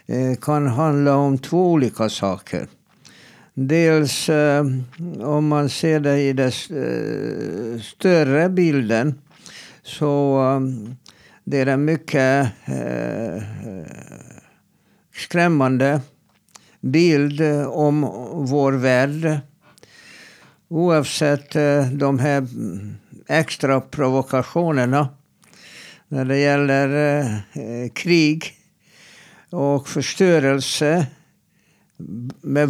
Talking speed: 70 wpm